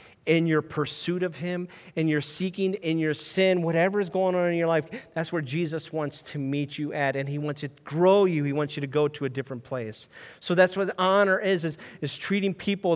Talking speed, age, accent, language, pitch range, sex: 230 wpm, 40-59, American, English, 145-195 Hz, male